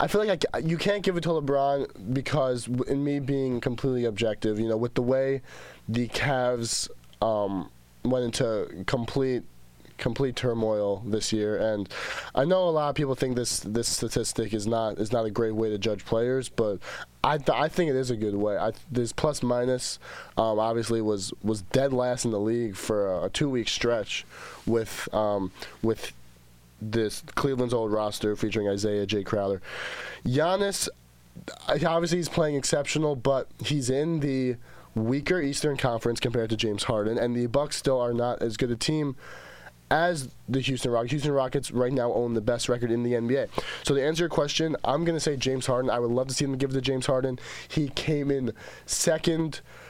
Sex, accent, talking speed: male, American, 190 wpm